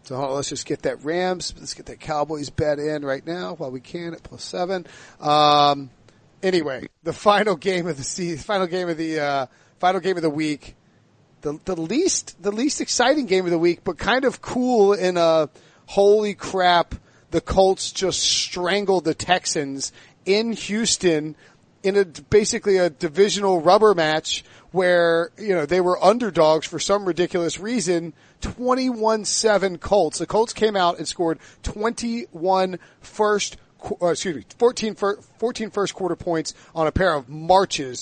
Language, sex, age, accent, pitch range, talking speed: English, male, 40-59, American, 155-195 Hz, 165 wpm